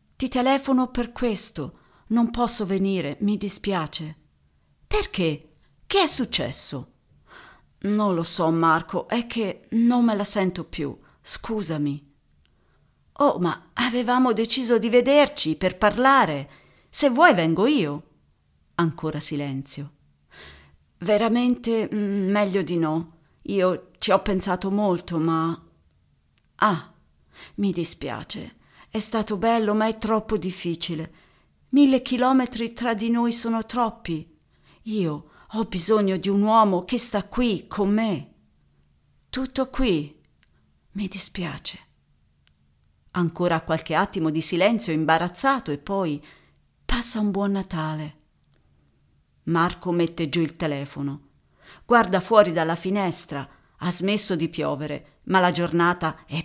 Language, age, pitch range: Italian, 40-59, 155-225 Hz